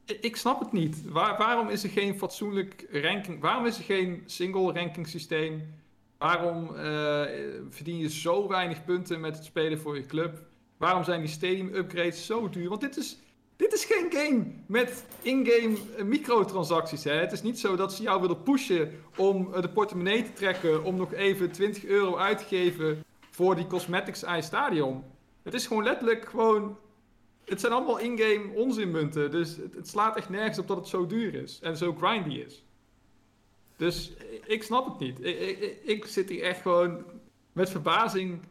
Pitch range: 160-210 Hz